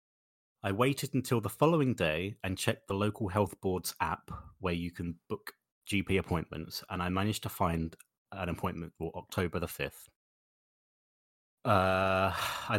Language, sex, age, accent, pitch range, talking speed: English, male, 30-49, British, 85-110 Hz, 150 wpm